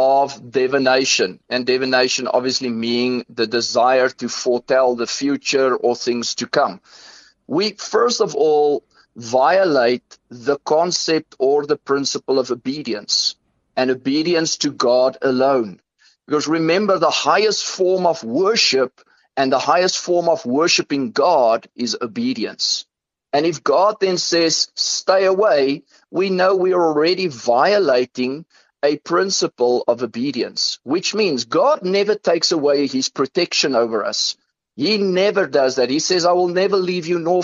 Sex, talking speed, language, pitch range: male, 140 wpm, English, 130-185 Hz